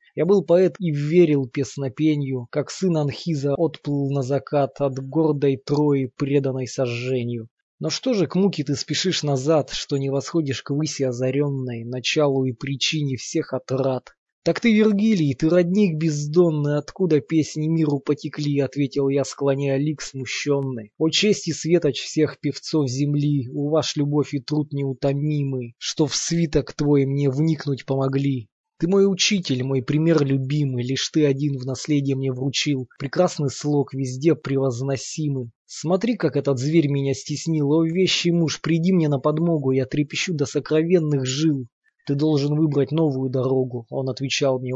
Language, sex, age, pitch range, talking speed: Russian, male, 20-39, 135-155 Hz, 150 wpm